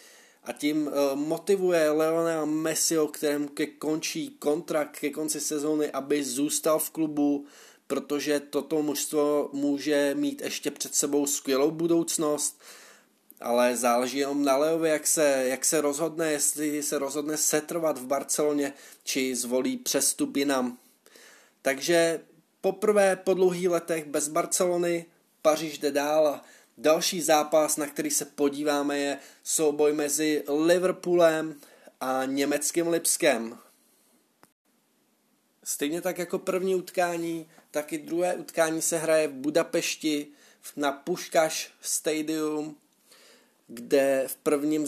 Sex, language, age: male, Czech, 20-39